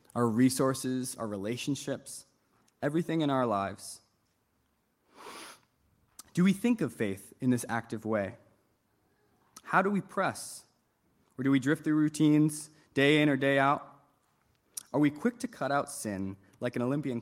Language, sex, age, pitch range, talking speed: English, male, 20-39, 115-150 Hz, 145 wpm